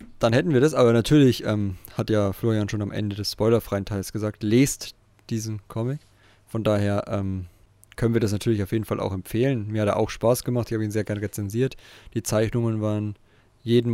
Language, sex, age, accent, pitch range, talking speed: German, male, 20-39, German, 105-120 Hz, 205 wpm